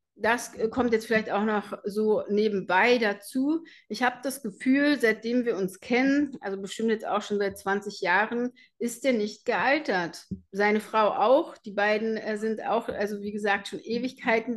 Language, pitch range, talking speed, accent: German, 205-240 Hz, 170 wpm, German